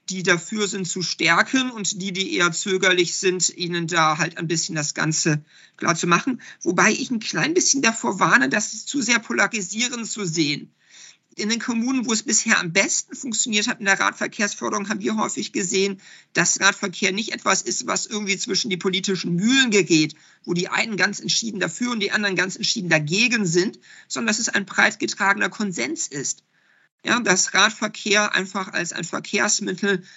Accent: German